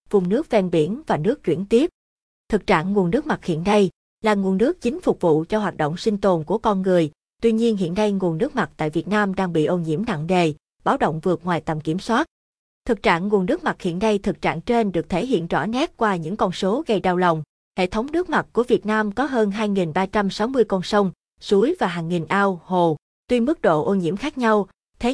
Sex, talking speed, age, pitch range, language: female, 240 wpm, 20-39, 175-225 Hz, Vietnamese